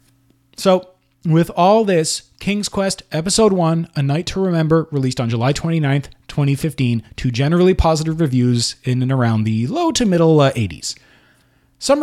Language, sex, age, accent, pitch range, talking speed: English, male, 30-49, American, 125-180 Hz, 150 wpm